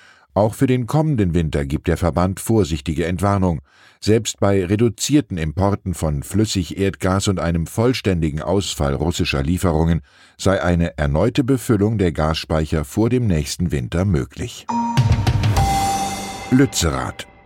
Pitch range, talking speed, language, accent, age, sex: 85-110 Hz, 115 wpm, German, German, 10-29, male